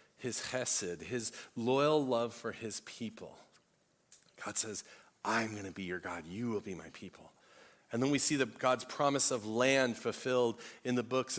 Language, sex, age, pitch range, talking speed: English, male, 40-59, 115-145 Hz, 175 wpm